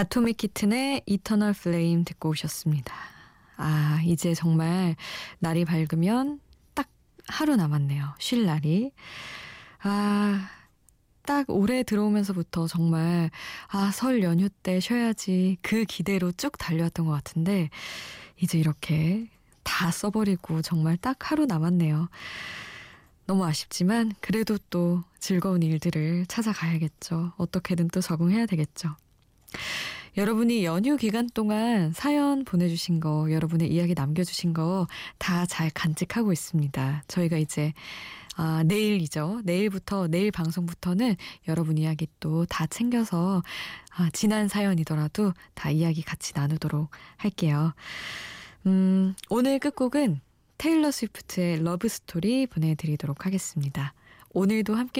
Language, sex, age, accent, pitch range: Korean, female, 20-39, native, 160-210 Hz